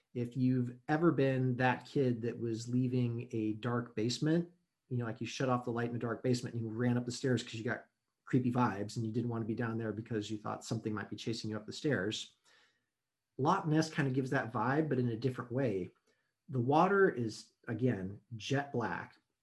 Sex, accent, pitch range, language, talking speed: male, American, 115-135 Hz, English, 220 wpm